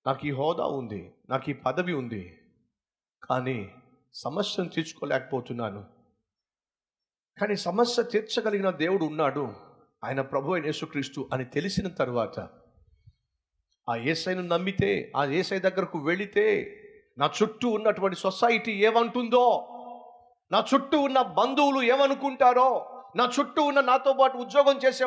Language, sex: Telugu, male